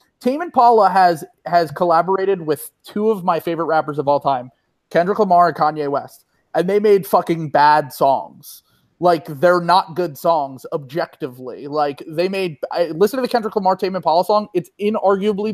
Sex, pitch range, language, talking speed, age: male, 150-200 Hz, English, 175 wpm, 30-49